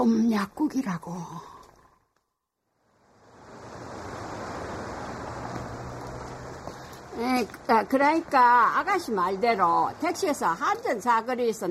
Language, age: Korean, 60-79